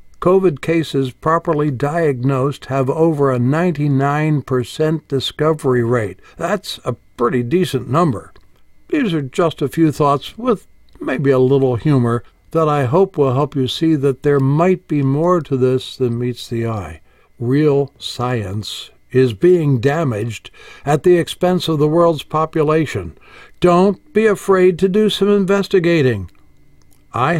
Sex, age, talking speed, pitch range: male, 60-79, 140 wpm, 125-170 Hz